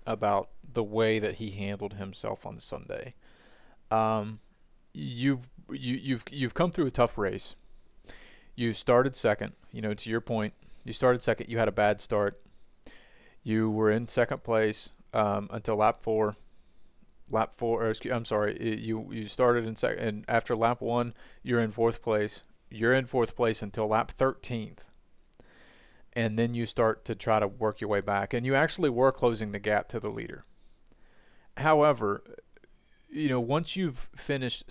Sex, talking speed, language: male, 170 wpm, English